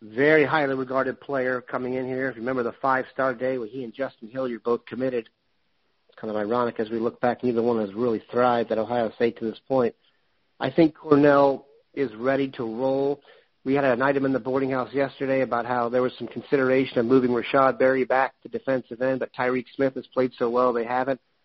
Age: 50-69